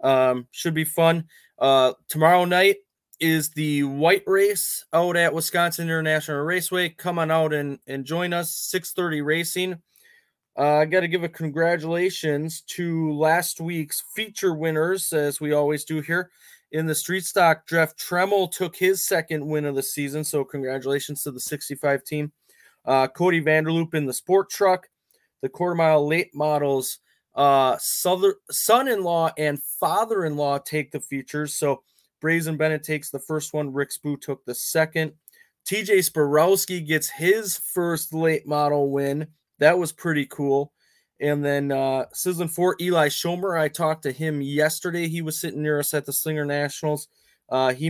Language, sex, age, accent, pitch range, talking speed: English, male, 20-39, American, 145-170 Hz, 160 wpm